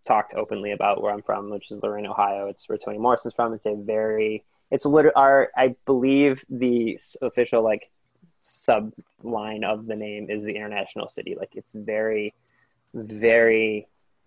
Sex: male